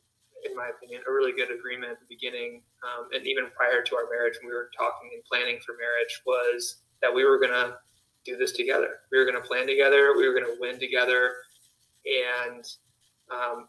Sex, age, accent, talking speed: male, 20-39, American, 210 wpm